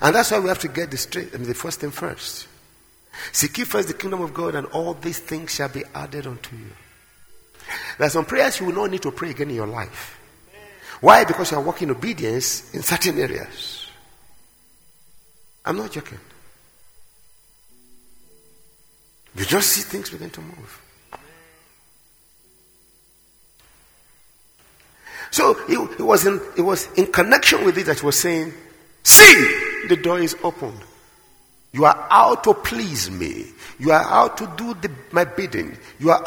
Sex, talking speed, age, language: male, 165 wpm, 50-69, English